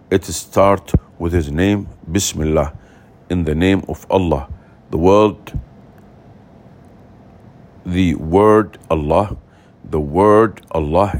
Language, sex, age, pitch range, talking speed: English, male, 50-69, 85-105 Hz, 100 wpm